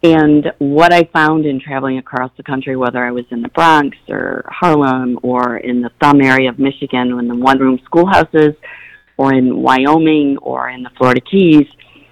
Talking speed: 180 wpm